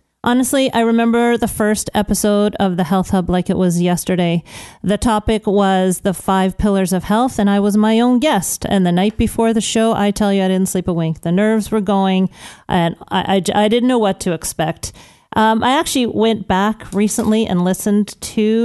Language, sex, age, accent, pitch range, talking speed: English, female, 40-59, American, 185-225 Hz, 205 wpm